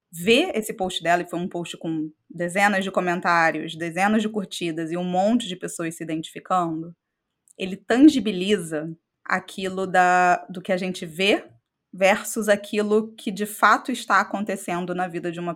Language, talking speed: Portuguese, 160 wpm